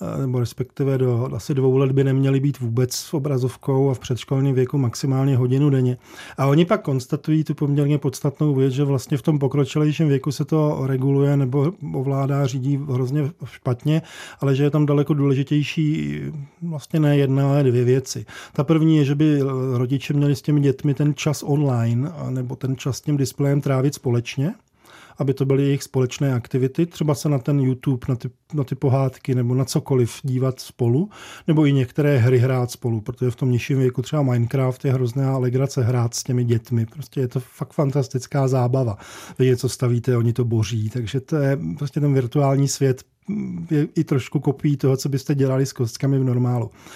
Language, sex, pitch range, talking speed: Czech, male, 130-150 Hz, 185 wpm